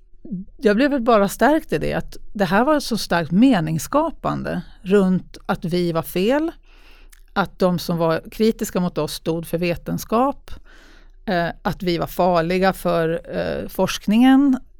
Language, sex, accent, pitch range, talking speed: Swedish, female, native, 175-230 Hz, 140 wpm